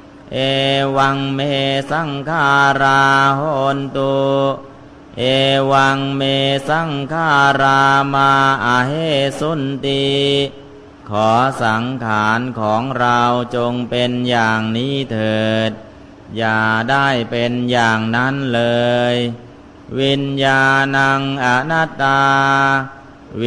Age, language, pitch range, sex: 30-49, Thai, 120-135 Hz, male